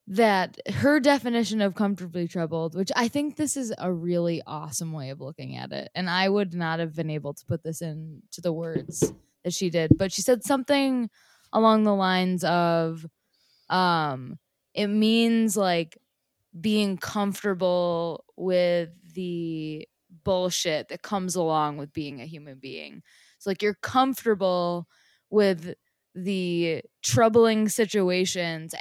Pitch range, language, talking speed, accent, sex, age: 165-210 Hz, English, 145 wpm, American, female, 20-39